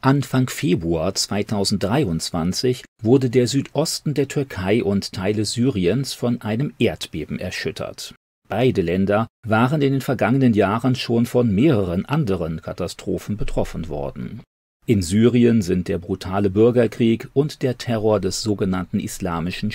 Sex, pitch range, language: male, 95-125 Hz, German